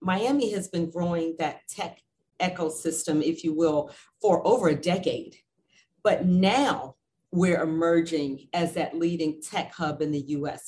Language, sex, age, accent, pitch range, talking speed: English, female, 40-59, American, 155-185 Hz, 145 wpm